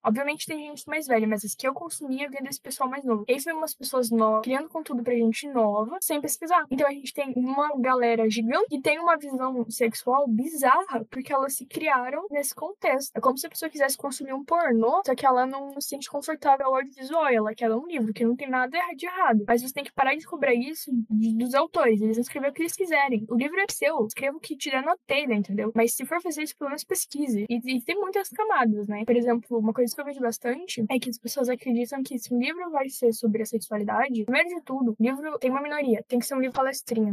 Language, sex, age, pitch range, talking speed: Portuguese, female, 10-29, 230-285 Hz, 245 wpm